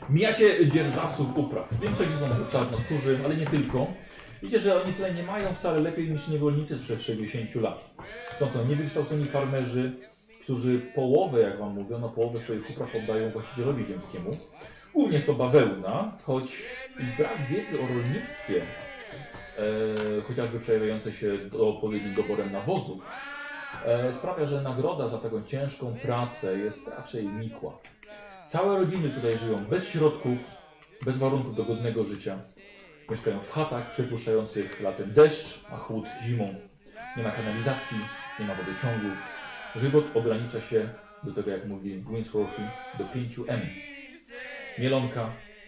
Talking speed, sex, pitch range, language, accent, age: 135 wpm, male, 115-155 Hz, Polish, native, 30-49